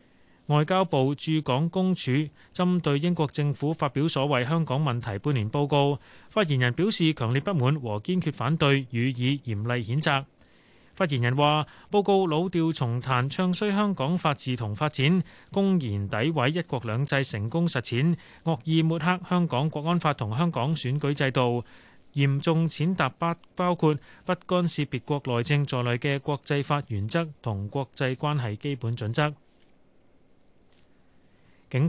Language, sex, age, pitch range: Chinese, male, 30-49, 125-170 Hz